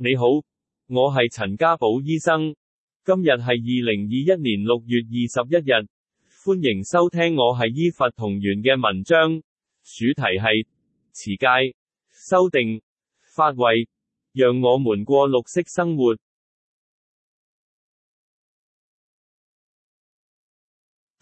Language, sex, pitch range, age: Chinese, male, 115-155 Hz, 30-49